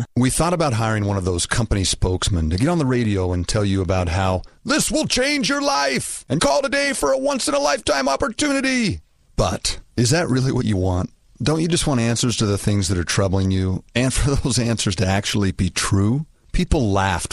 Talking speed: 210 wpm